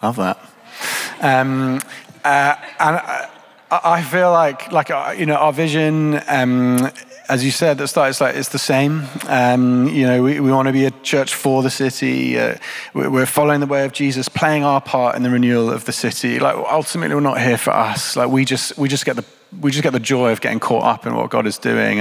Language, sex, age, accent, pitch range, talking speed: English, male, 30-49, British, 120-140 Hz, 230 wpm